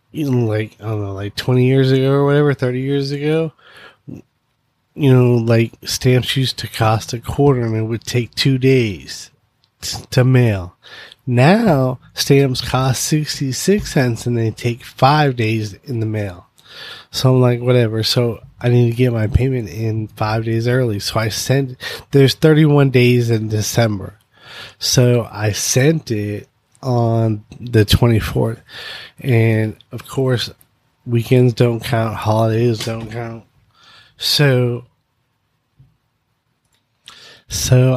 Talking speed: 135 wpm